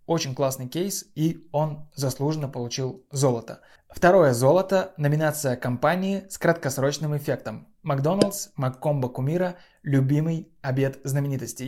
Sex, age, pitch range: male, 20-39, 130-155 Hz